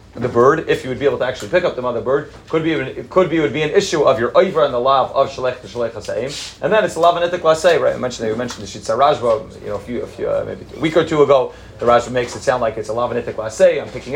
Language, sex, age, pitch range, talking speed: English, male, 30-49, 125-165 Hz, 295 wpm